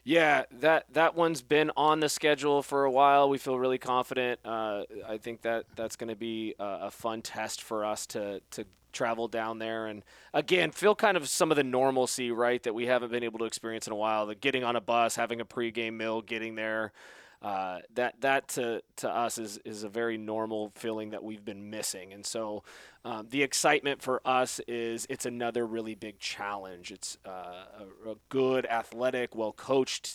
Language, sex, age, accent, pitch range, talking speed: English, male, 20-39, American, 110-125 Hz, 205 wpm